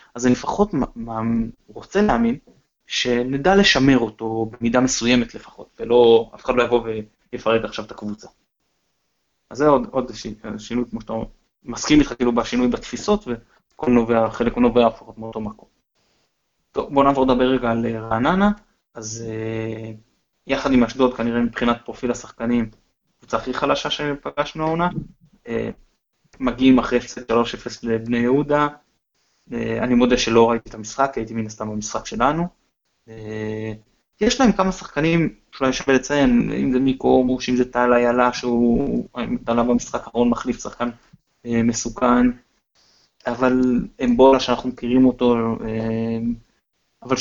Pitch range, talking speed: 115-135 Hz, 135 wpm